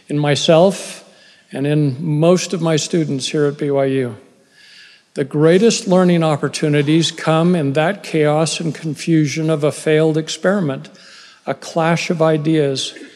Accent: American